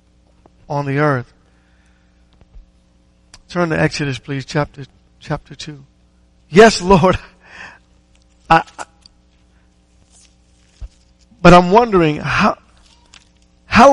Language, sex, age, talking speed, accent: English, male, 50-69, 85 wpm, American